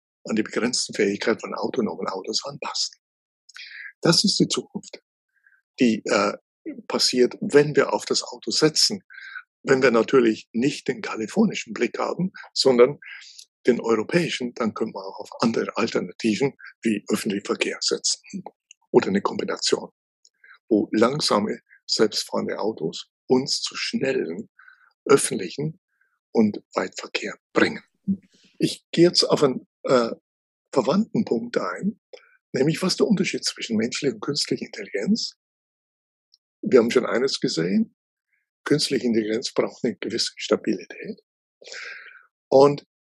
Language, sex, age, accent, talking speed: German, male, 60-79, German, 120 wpm